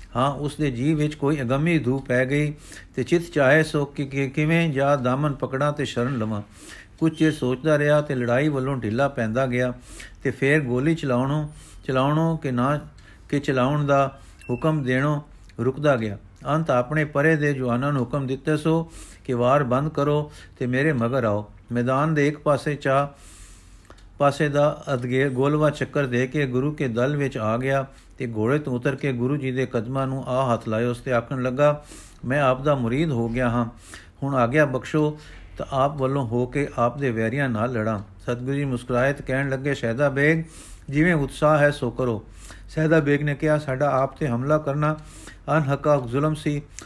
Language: Punjabi